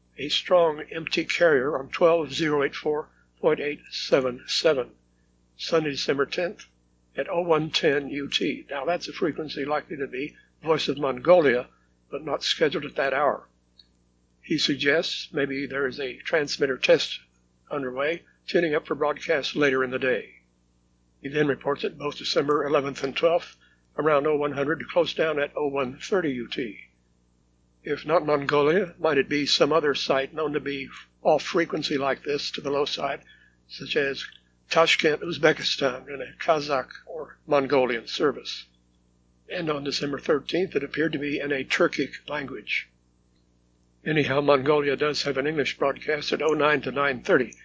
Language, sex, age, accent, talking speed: English, male, 60-79, American, 150 wpm